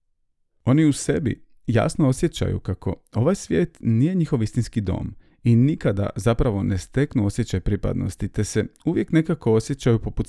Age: 40-59